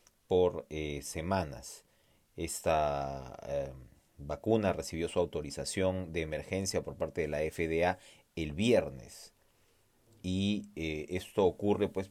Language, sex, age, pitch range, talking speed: Spanish, male, 30-49, 80-95 Hz, 115 wpm